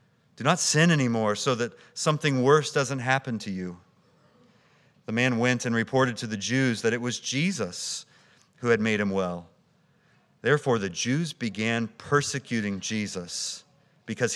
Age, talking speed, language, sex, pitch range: 40-59, 150 wpm, English, male, 110-145 Hz